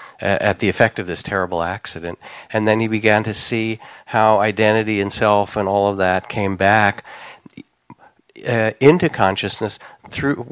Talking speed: 155 wpm